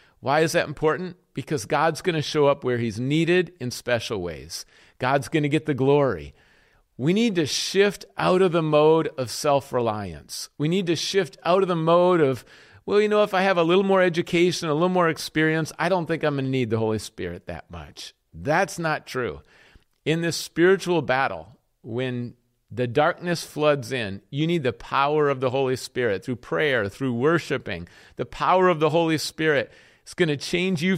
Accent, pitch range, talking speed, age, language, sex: American, 130-170 Hz, 200 wpm, 50-69, English, male